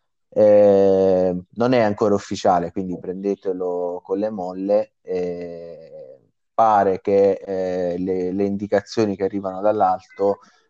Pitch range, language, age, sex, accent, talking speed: 90-105 Hz, Italian, 20-39, male, native, 110 wpm